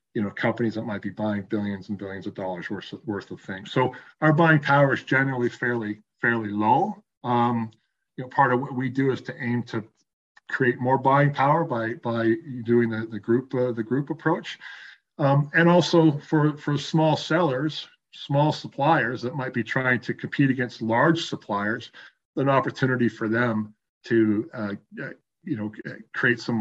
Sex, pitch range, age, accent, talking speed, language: male, 110-135 Hz, 40-59, American, 180 wpm, English